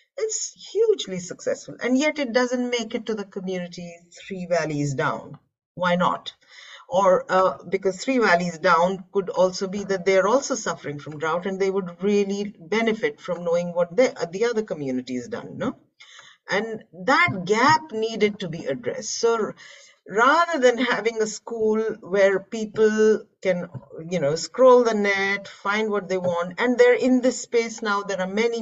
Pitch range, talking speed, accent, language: 175-245 Hz, 165 wpm, Indian, English